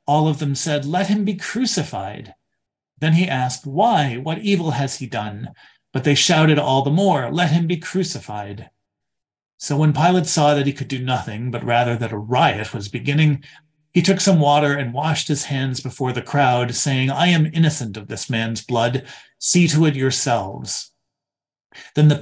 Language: English